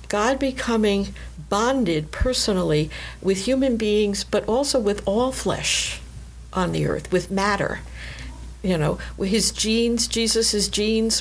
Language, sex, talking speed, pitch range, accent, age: English, female, 125 wpm, 175-210 Hz, American, 60-79